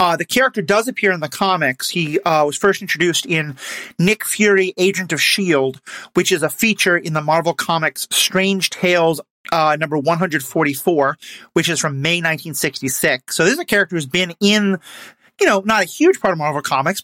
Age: 30-49